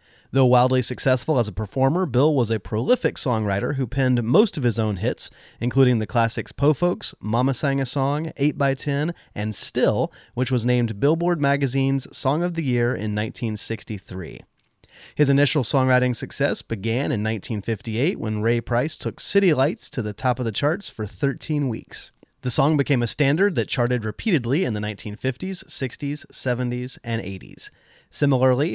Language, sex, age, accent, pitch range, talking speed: English, male, 30-49, American, 115-145 Hz, 165 wpm